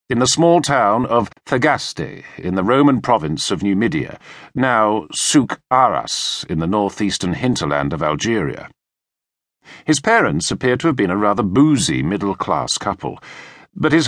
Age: 50-69